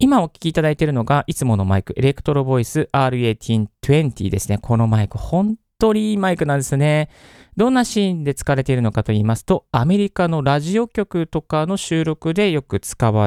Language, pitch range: Japanese, 110-165 Hz